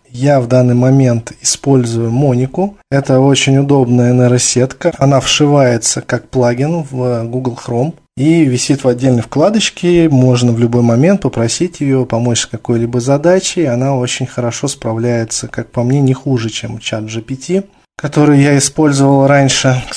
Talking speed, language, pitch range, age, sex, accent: 145 wpm, Russian, 115-140 Hz, 20-39, male, native